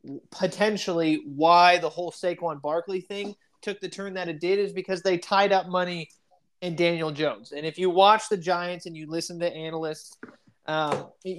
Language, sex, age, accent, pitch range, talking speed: English, male, 20-39, American, 160-195 Hz, 180 wpm